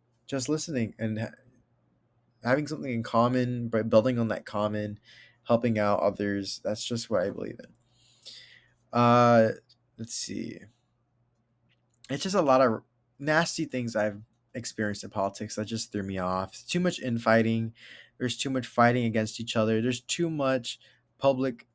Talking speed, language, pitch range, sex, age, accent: 145 wpm, English, 110-125 Hz, male, 20-39, American